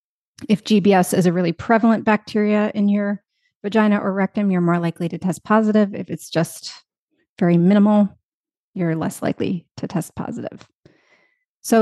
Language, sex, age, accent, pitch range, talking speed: English, female, 30-49, American, 180-210 Hz, 150 wpm